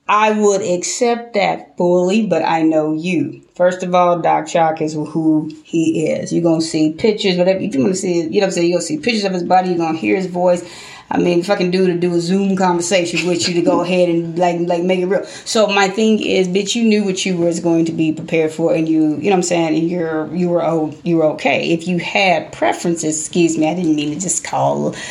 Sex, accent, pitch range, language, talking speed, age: female, American, 165-210 Hz, English, 265 wpm, 30-49